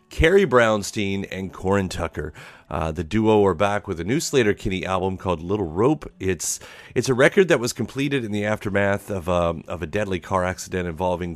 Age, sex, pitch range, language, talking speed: 30-49, male, 90-120 Hz, English, 190 wpm